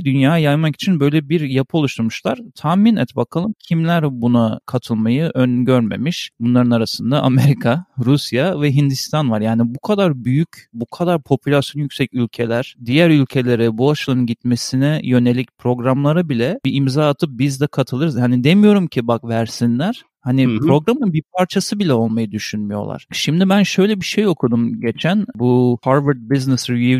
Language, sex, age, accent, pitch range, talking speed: Turkish, male, 40-59, native, 120-170 Hz, 150 wpm